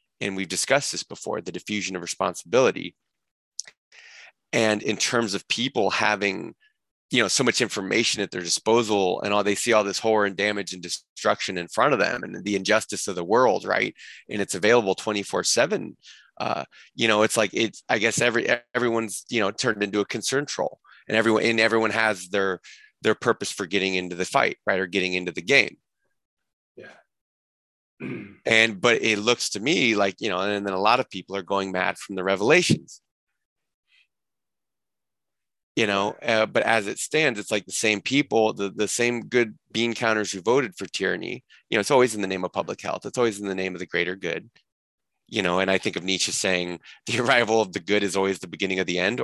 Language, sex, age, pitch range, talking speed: English, male, 30-49, 95-115 Hz, 205 wpm